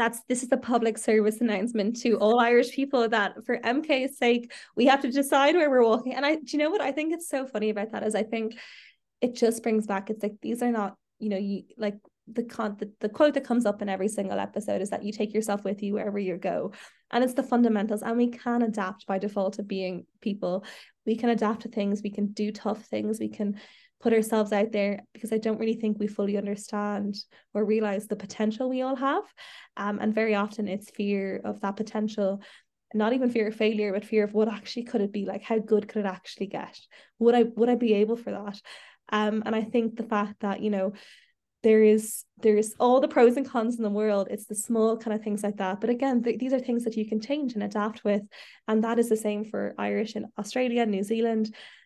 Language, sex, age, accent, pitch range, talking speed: English, female, 20-39, Irish, 205-235 Hz, 235 wpm